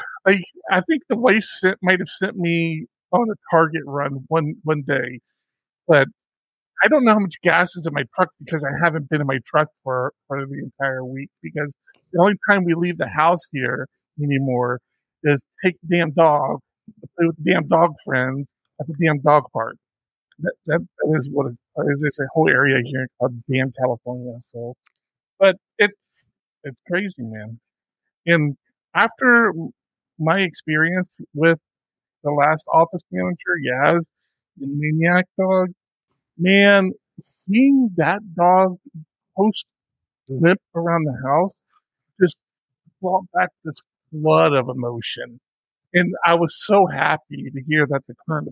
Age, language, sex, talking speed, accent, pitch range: 50-69, English, male, 155 wpm, American, 135-180 Hz